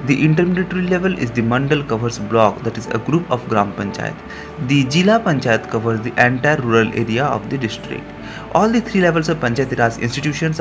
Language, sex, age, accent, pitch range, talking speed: Hindi, male, 30-49, native, 110-150 Hz, 190 wpm